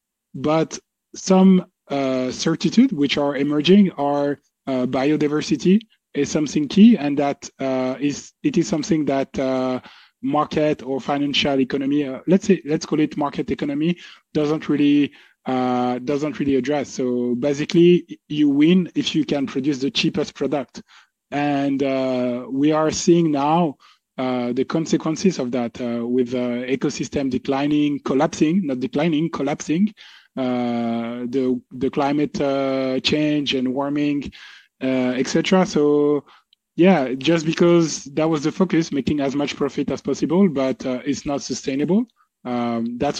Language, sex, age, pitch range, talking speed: French, male, 20-39, 130-160 Hz, 140 wpm